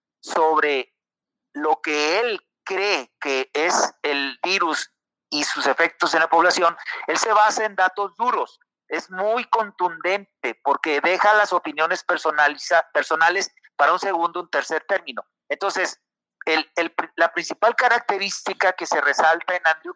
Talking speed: 140 wpm